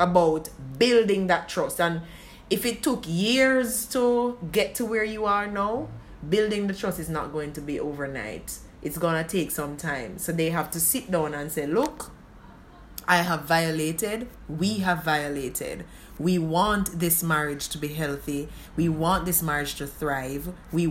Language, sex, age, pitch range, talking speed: English, female, 20-39, 150-195 Hz, 170 wpm